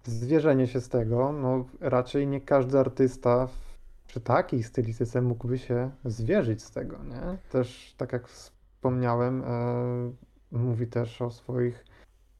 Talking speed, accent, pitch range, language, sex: 125 wpm, native, 115-135 Hz, Polish, male